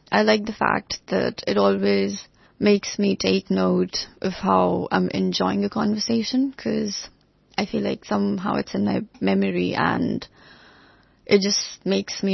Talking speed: 150 wpm